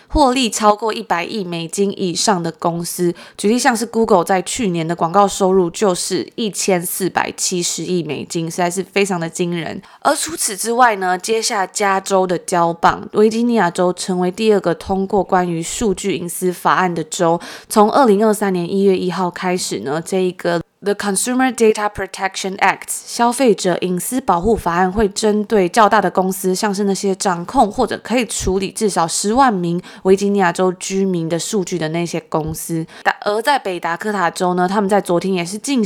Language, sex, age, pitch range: Chinese, female, 20-39, 180-215 Hz